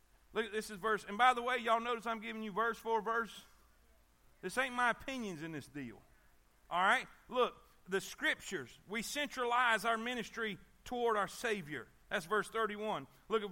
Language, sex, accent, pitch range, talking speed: English, male, American, 175-245 Hz, 180 wpm